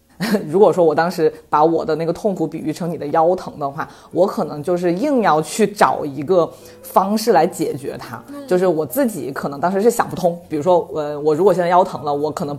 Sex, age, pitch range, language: female, 20-39, 155-245 Hz, Chinese